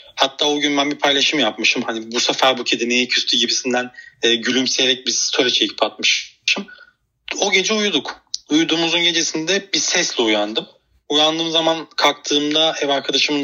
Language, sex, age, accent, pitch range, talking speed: Turkish, male, 30-49, native, 125-165 Hz, 145 wpm